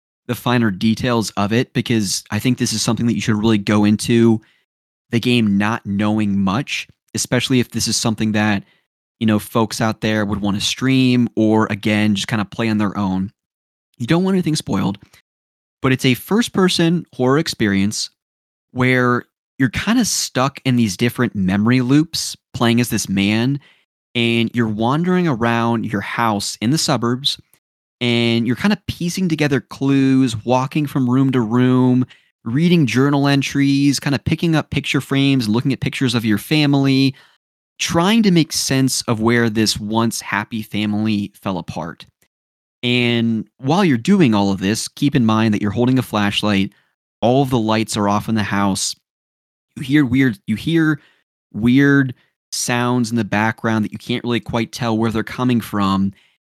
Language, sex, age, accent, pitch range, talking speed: English, male, 20-39, American, 105-135 Hz, 175 wpm